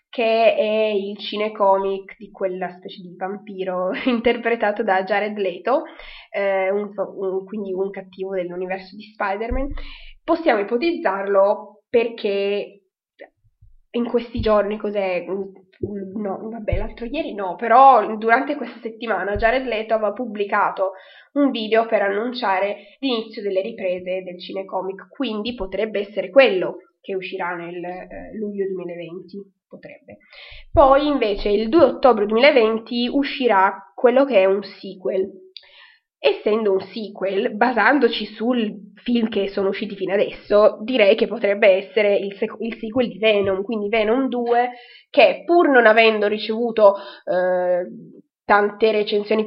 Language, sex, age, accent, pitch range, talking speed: Italian, female, 20-39, native, 195-240 Hz, 125 wpm